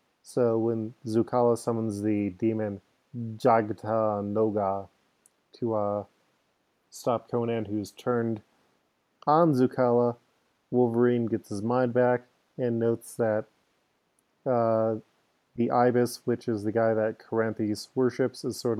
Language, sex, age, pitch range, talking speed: English, male, 20-39, 110-125 Hz, 115 wpm